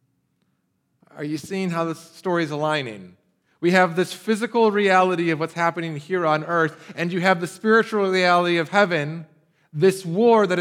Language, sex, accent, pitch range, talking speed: English, male, American, 145-195 Hz, 170 wpm